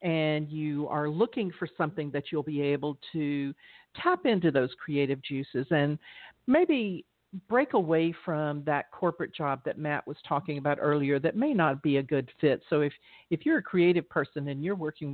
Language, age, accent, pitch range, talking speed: English, 50-69, American, 150-190 Hz, 185 wpm